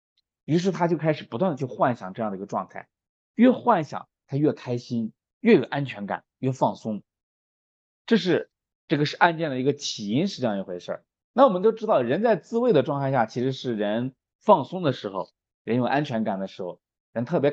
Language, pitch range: Chinese, 115-175 Hz